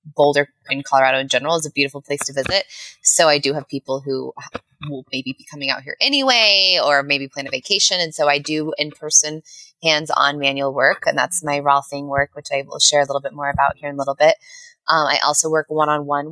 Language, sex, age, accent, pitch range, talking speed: English, female, 20-39, American, 145-165 Hz, 230 wpm